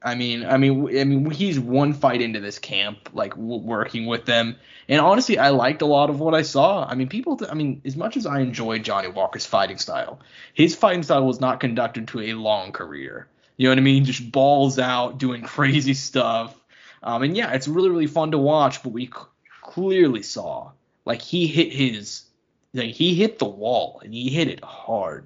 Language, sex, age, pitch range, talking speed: English, male, 20-39, 120-145 Hz, 225 wpm